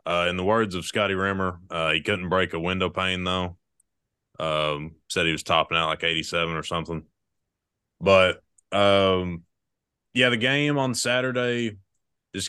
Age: 20-39